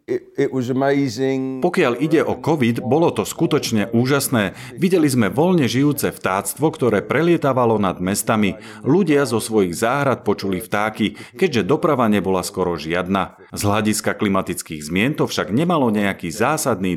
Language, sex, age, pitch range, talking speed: Slovak, male, 40-59, 95-135 Hz, 130 wpm